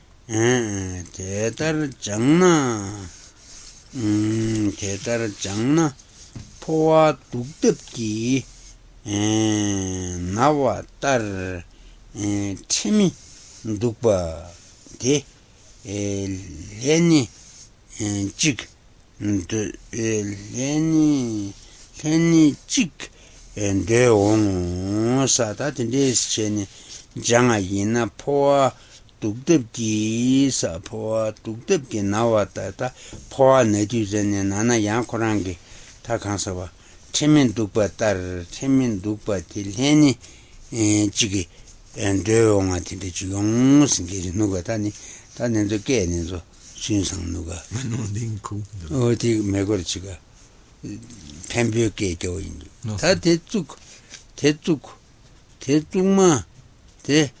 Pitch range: 100-125 Hz